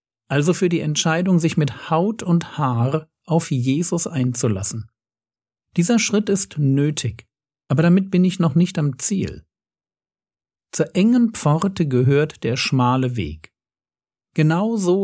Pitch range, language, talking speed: 125-165 Hz, German, 130 wpm